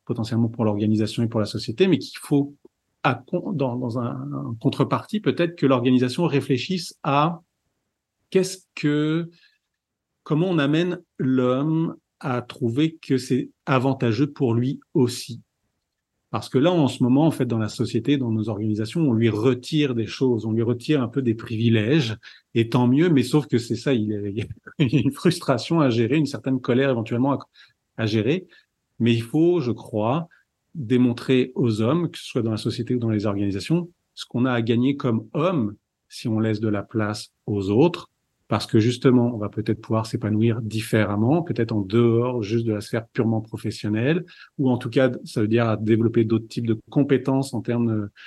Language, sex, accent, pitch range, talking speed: French, male, French, 115-140 Hz, 185 wpm